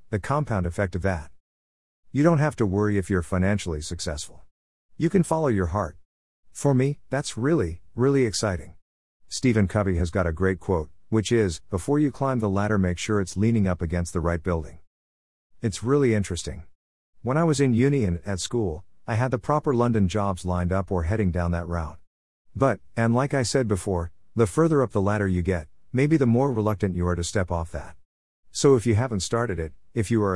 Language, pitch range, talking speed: English, 85-120 Hz, 205 wpm